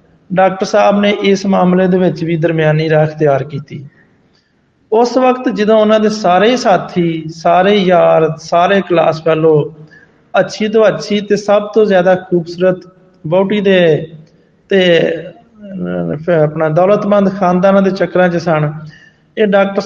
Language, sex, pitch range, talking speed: Hindi, male, 165-195 Hz, 110 wpm